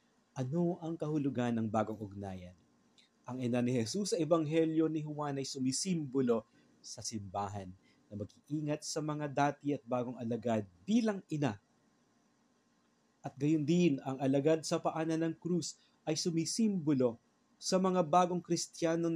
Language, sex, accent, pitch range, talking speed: Filipino, male, native, 120-180 Hz, 135 wpm